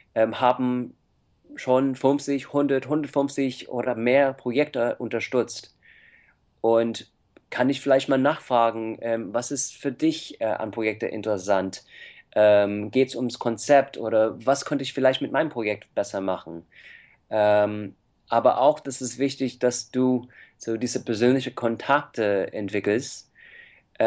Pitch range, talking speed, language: 110-130 Hz, 120 wpm, German